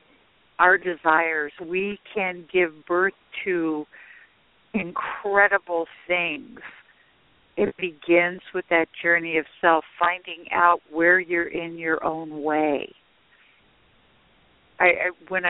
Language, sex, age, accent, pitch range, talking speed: English, female, 60-79, American, 175-220 Hz, 105 wpm